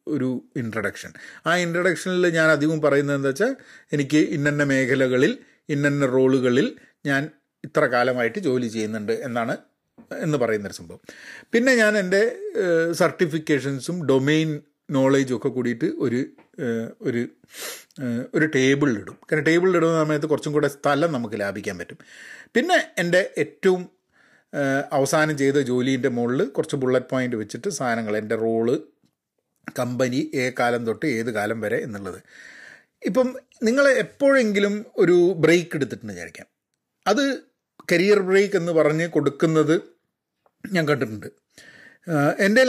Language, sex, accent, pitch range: Malayalam, male, native, 130-175 Hz